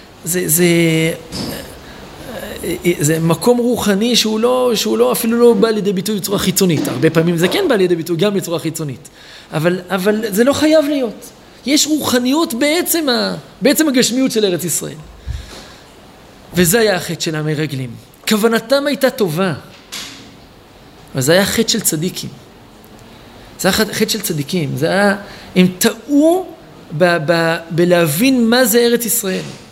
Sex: male